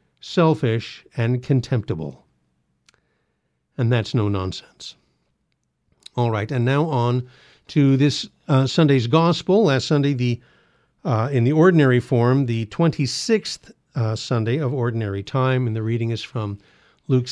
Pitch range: 120-155 Hz